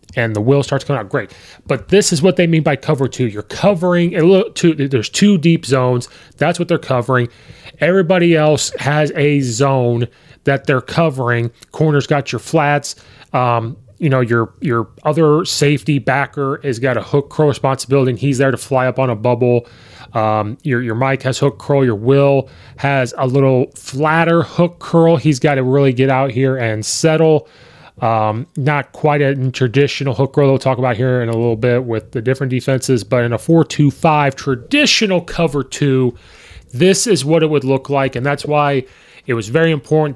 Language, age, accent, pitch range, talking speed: English, 30-49, American, 125-155 Hz, 190 wpm